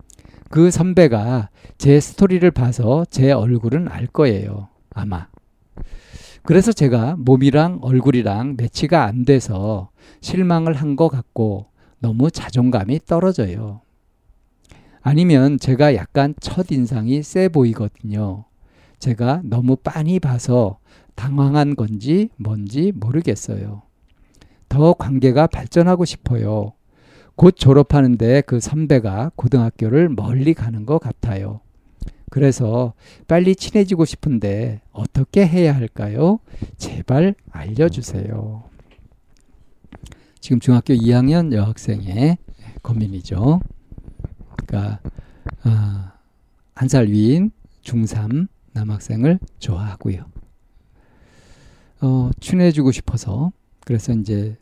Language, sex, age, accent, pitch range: Korean, male, 50-69, native, 105-145 Hz